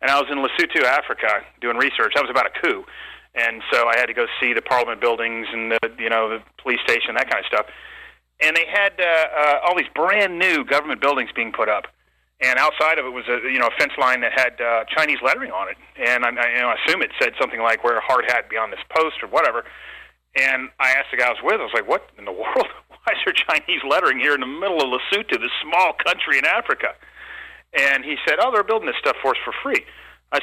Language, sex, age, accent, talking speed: English, male, 40-59, American, 250 wpm